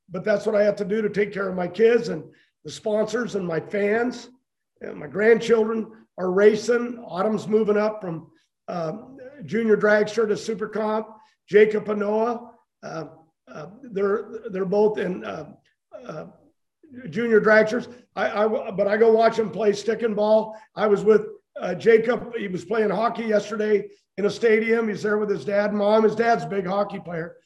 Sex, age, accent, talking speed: male, 50-69, American, 185 wpm